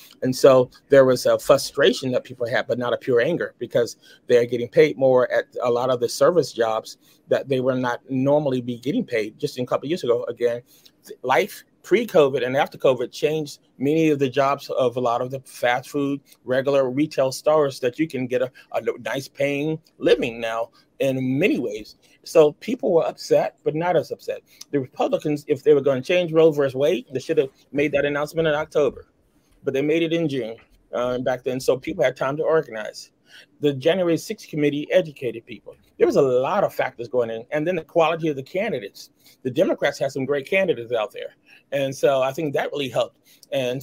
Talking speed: 210 wpm